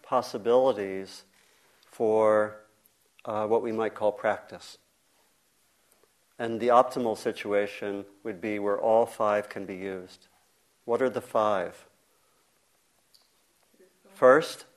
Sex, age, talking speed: male, 50-69, 100 wpm